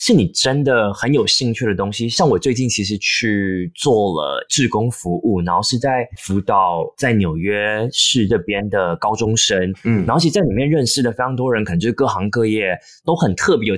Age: 20-39